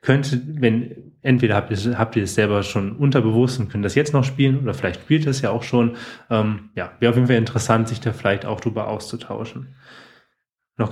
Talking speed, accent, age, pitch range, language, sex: 210 wpm, German, 20-39, 110-135 Hz, German, male